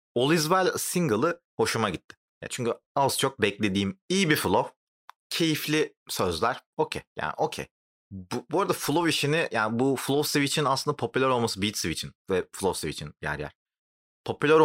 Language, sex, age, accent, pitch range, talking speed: Turkish, male, 30-49, native, 105-165 Hz, 155 wpm